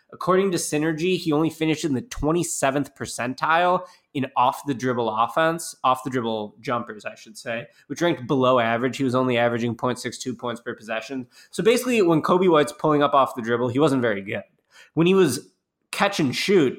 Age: 20-39